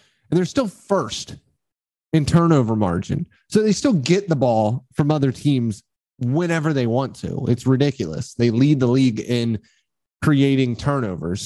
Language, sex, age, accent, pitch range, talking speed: English, male, 20-39, American, 110-140 Hz, 150 wpm